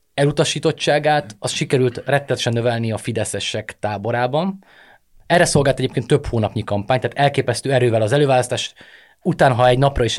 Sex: male